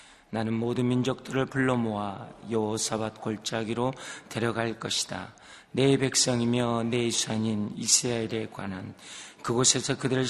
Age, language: 40-59, Korean